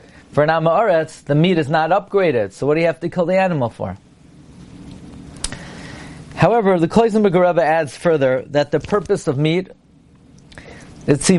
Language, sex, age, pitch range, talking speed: English, male, 30-49, 145-180 Hz, 165 wpm